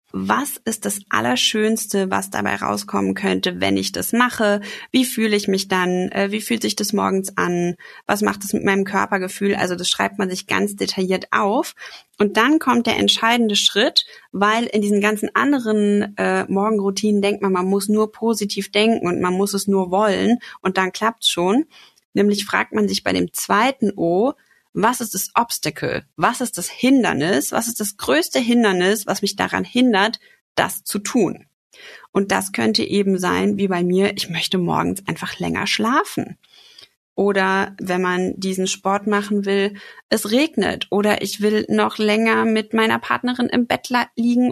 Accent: German